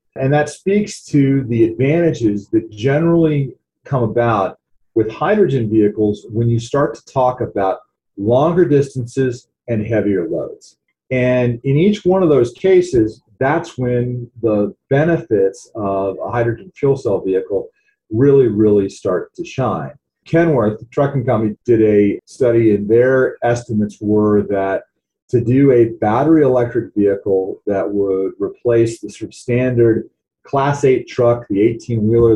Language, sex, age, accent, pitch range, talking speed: English, male, 40-59, American, 110-150 Hz, 140 wpm